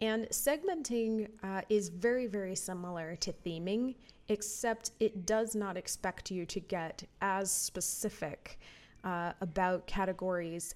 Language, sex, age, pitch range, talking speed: English, female, 30-49, 175-210 Hz, 125 wpm